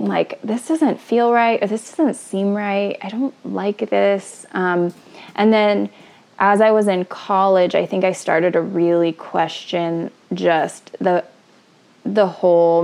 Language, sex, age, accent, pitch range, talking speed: English, female, 20-39, American, 170-195 Hz, 155 wpm